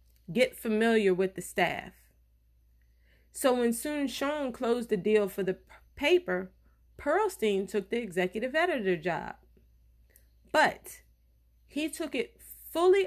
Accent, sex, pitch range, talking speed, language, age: American, female, 160-225 Hz, 115 wpm, English, 30-49